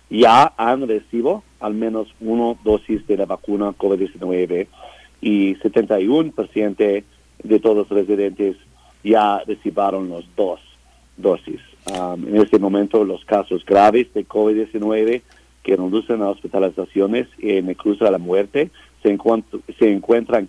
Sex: male